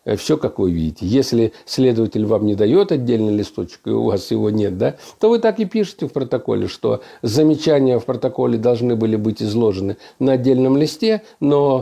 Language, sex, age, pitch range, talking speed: Russian, male, 50-69, 105-145 Hz, 185 wpm